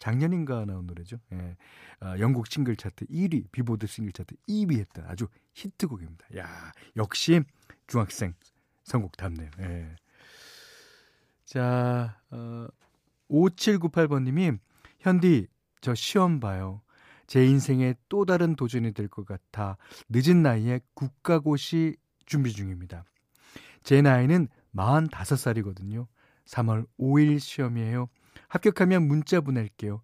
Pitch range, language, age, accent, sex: 105-150 Hz, Korean, 40-59, native, male